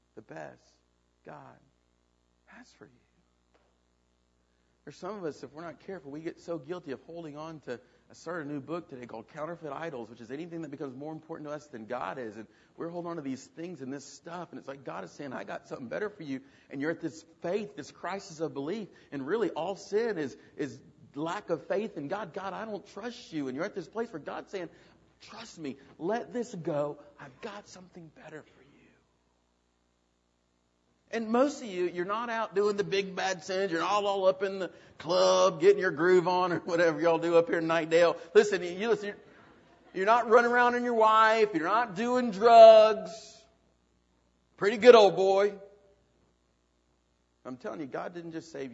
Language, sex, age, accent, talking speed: English, male, 50-69, American, 205 wpm